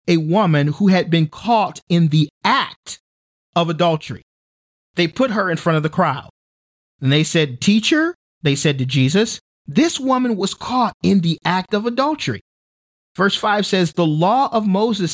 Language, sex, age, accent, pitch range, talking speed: English, male, 40-59, American, 130-200 Hz, 170 wpm